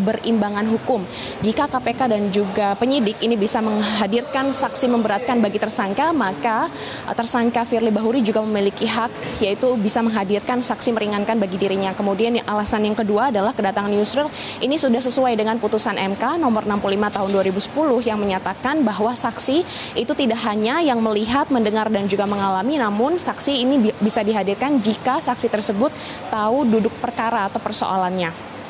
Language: Indonesian